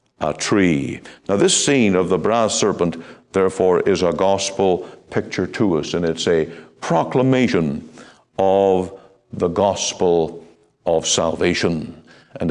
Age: 60-79